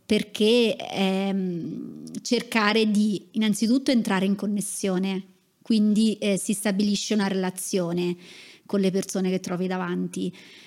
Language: Italian